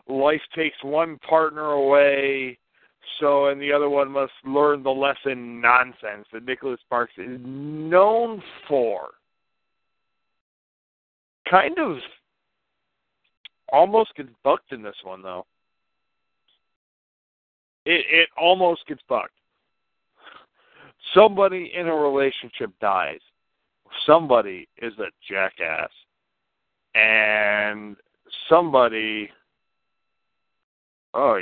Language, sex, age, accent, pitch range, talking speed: English, male, 50-69, American, 105-155 Hz, 90 wpm